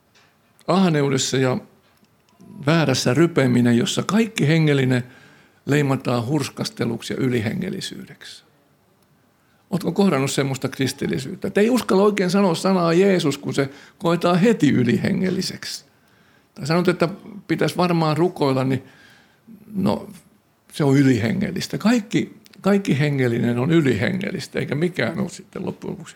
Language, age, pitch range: Finnish, 60-79, 135-190 Hz